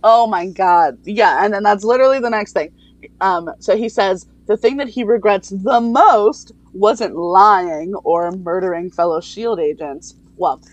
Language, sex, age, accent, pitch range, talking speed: English, female, 20-39, American, 190-280 Hz, 170 wpm